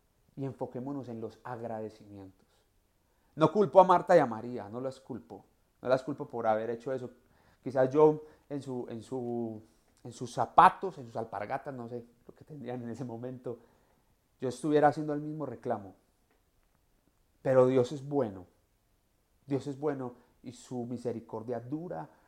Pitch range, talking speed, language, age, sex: 110-140 Hz, 150 wpm, Spanish, 40-59, male